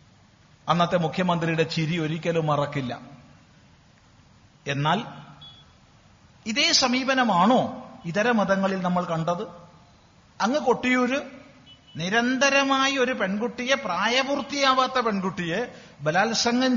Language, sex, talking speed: Malayalam, male, 70 wpm